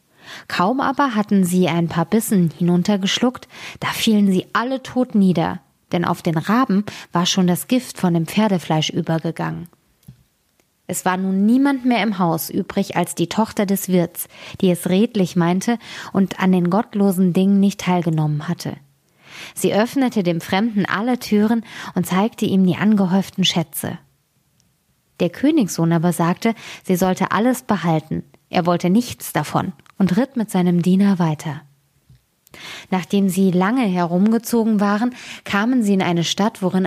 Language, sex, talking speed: German, female, 150 wpm